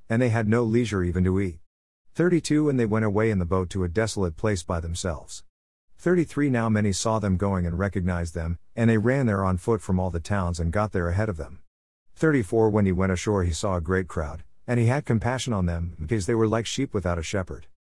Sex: male